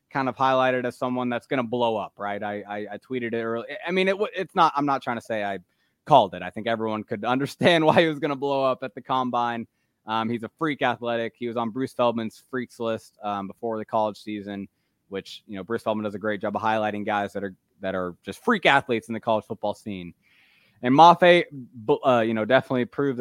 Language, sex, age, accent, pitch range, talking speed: English, male, 20-39, American, 110-140 Hz, 240 wpm